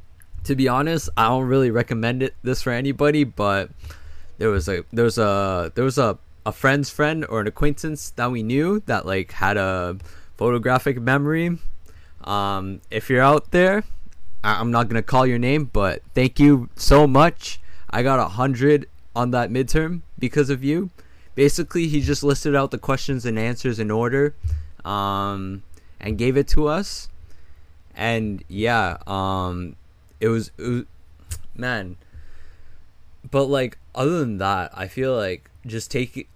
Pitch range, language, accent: 90-130 Hz, English, American